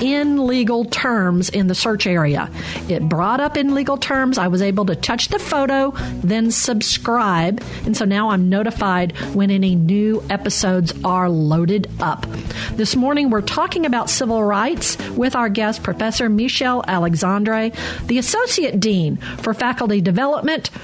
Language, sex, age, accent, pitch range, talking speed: English, female, 50-69, American, 195-250 Hz, 155 wpm